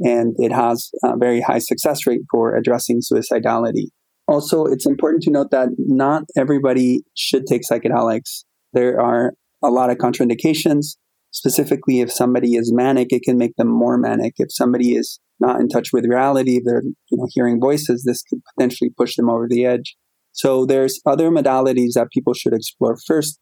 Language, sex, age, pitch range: English, male, 20-39, 120-130 Hz